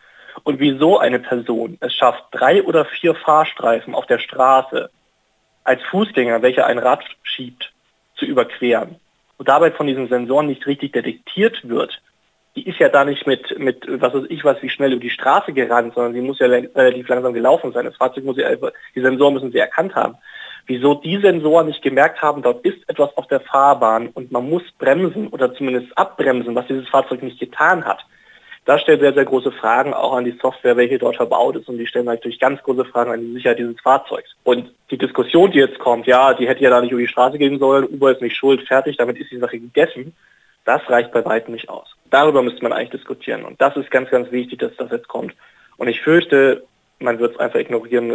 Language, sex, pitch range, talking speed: German, male, 125-150 Hz, 210 wpm